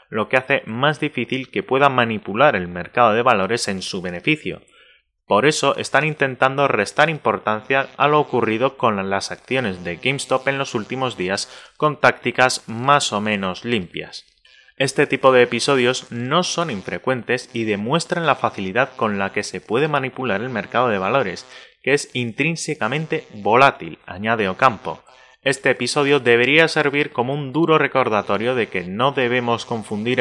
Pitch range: 110-140 Hz